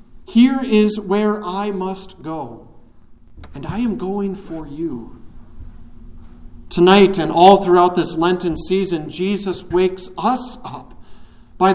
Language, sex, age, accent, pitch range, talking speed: English, male, 40-59, American, 160-200 Hz, 125 wpm